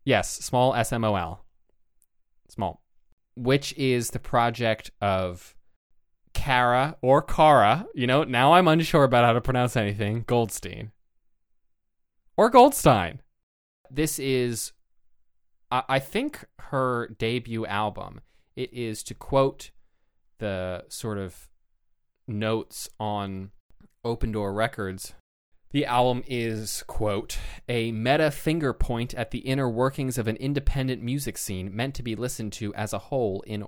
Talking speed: 130 wpm